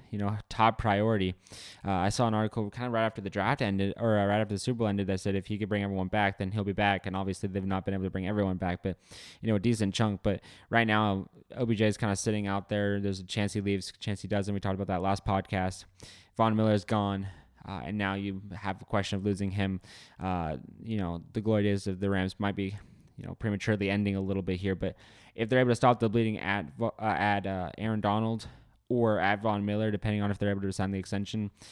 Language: English